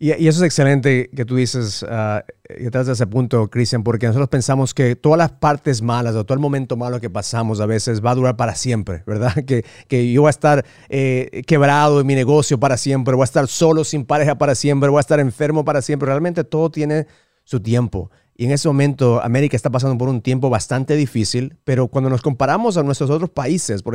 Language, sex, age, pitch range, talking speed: English, male, 40-59, 130-170 Hz, 225 wpm